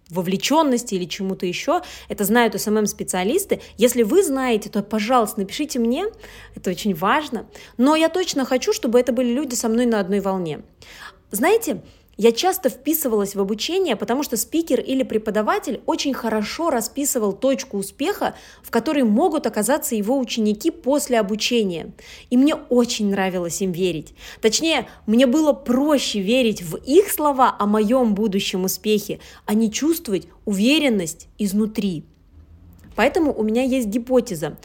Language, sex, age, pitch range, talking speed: Russian, female, 20-39, 205-265 Hz, 140 wpm